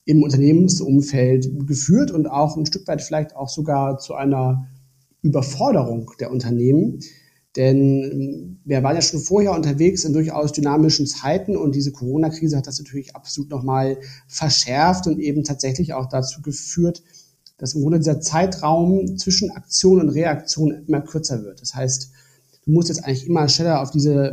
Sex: male